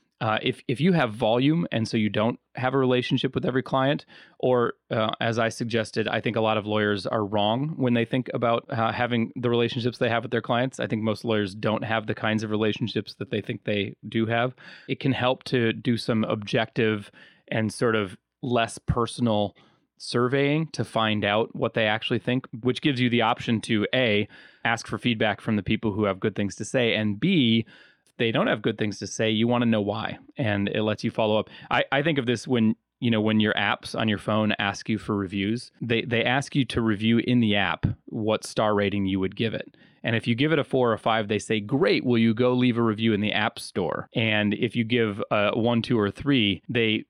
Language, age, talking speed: English, 30-49, 235 wpm